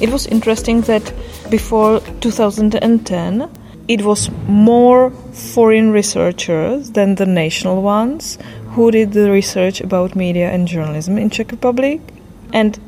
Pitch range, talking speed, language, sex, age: 180-225 Hz, 125 wpm, English, female, 20-39